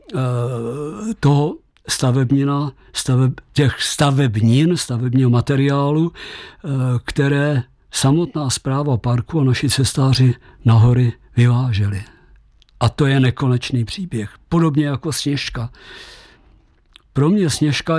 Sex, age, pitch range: male, 50-69, 120-145 Hz